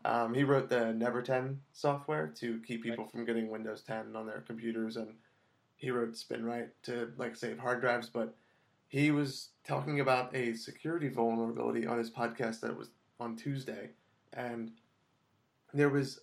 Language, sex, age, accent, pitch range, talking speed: English, male, 30-49, American, 115-130 Hz, 165 wpm